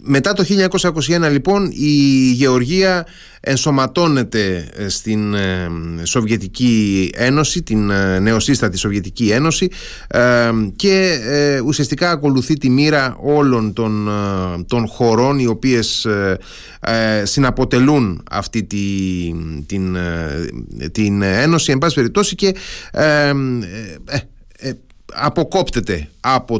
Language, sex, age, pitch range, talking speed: Greek, male, 30-49, 110-145 Hz, 85 wpm